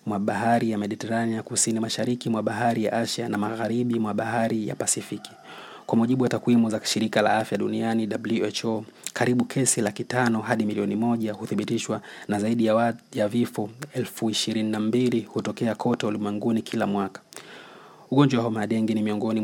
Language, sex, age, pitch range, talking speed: Swahili, male, 30-49, 105-115 Hz, 150 wpm